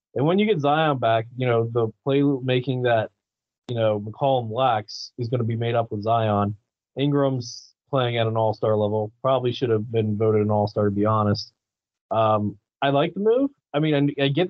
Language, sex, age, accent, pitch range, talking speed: English, male, 20-39, American, 110-135 Hz, 210 wpm